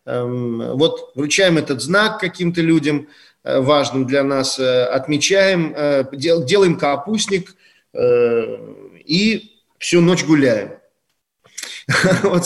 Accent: native